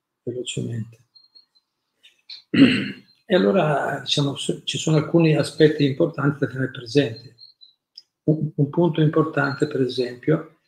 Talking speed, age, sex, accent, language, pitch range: 100 wpm, 50-69, male, native, Italian, 130-150 Hz